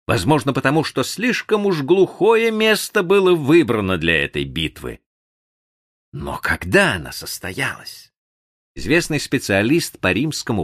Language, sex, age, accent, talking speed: Russian, male, 50-69, native, 115 wpm